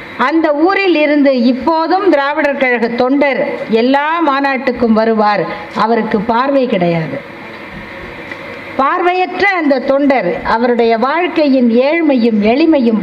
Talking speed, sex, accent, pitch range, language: 75 wpm, female, native, 255-335 Hz, Tamil